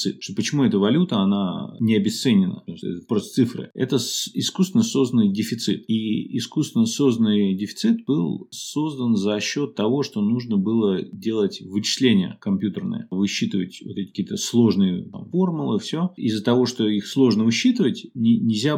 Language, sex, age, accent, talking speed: Russian, male, 30-49, native, 135 wpm